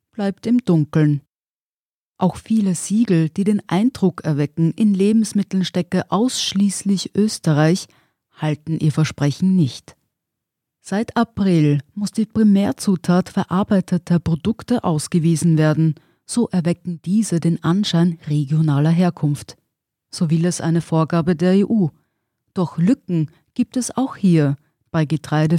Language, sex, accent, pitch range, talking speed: German, female, German, 155-205 Hz, 115 wpm